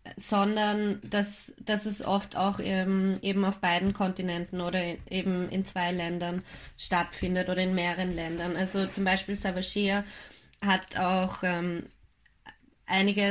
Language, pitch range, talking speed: German, 185-210 Hz, 130 wpm